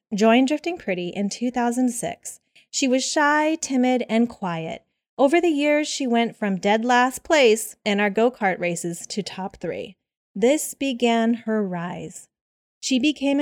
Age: 30-49